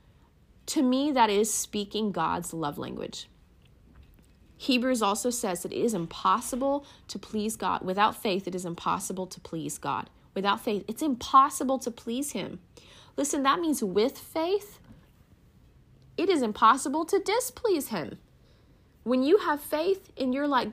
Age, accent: 30-49, American